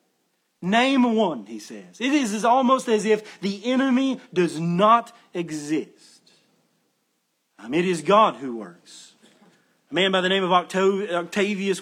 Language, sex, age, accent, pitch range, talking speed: English, male, 40-59, American, 180-220 Hz, 130 wpm